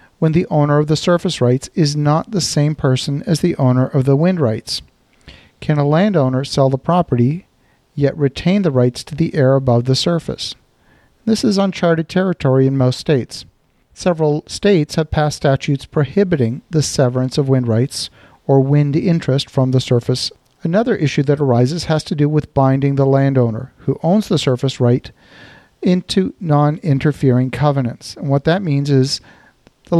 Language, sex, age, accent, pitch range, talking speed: English, male, 50-69, American, 130-165 Hz, 170 wpm